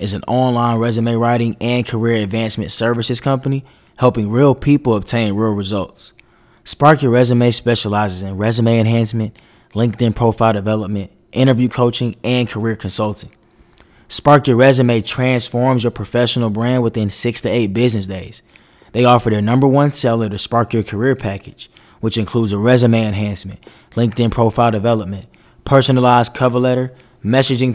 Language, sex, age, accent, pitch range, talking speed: English, male, 20-39, American, 110-125 Hz, 145 wpm